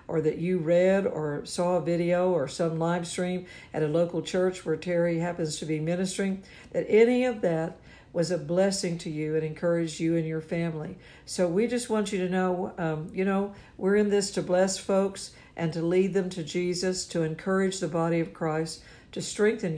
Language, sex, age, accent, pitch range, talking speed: English, female, 60-79, American, 165-185 Hz, 205 wpm